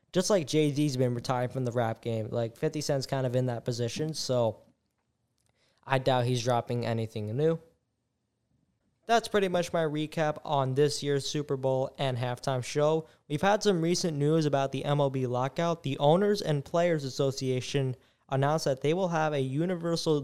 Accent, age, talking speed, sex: American, 20-39, 170 wpm, male